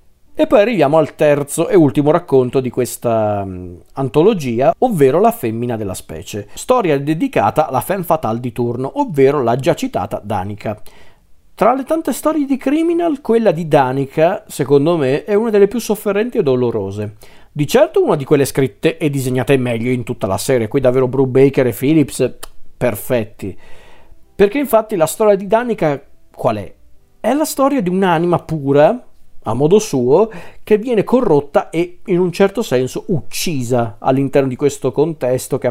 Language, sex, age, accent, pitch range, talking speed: Italian, male, 40-59, native, 125-180 Hz, 165 wpm